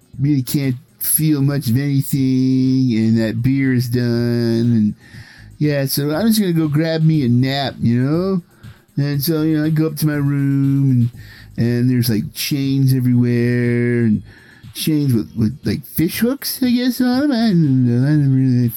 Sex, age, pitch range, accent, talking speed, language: male, 50-69, 120-160 Hz, American, 175 wpm, English